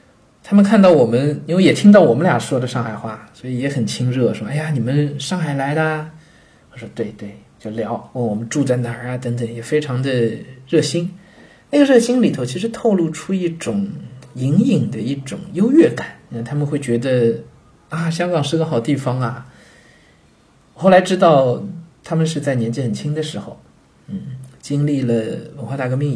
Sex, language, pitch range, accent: male, Chinese, 120-155 Hz, native